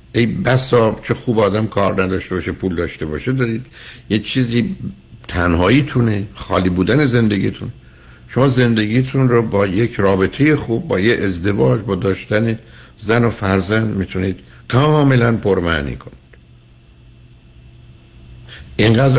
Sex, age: male, 60-79